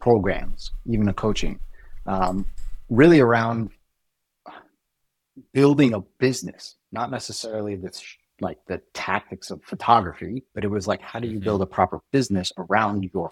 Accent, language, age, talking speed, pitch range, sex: American, English, 30-49, 140 wpm, 100-120 Hz, male